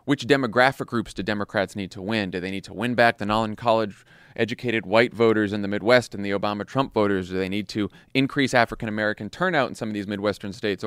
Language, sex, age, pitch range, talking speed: English, male, 30-49, 100-125 Hz, 215 wpm